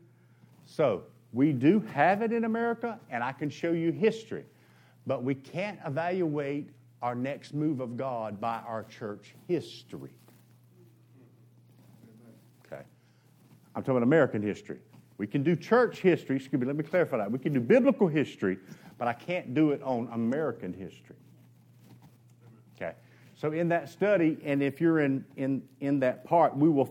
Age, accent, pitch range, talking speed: 50-69, American, 120-155 Hz, 160 wpm